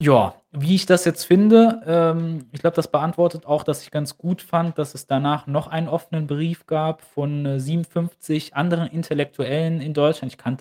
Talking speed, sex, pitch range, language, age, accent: 180 wpm, male, 120-165 Hz, German, 20-39, German